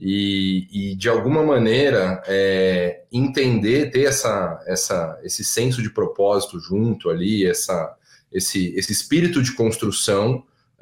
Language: Portuguese